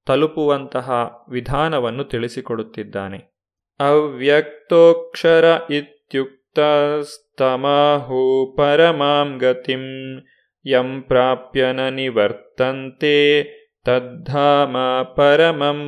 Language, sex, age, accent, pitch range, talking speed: Kannada, male, 30-49, native, 130-155 Hz, 40 wpm